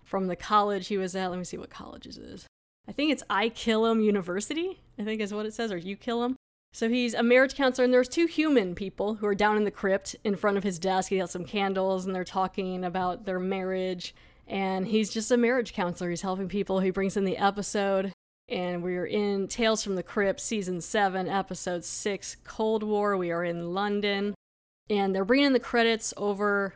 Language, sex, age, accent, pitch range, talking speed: English, female, 20-39, American, 190-225 Hz, 220 wpm